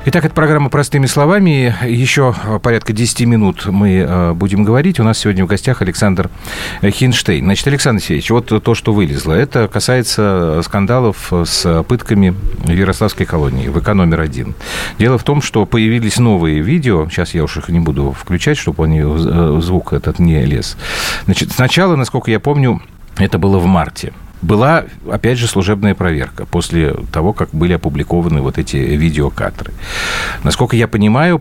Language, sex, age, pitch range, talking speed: Russian, male, 40-59, 85-115 Hz, 155 wpm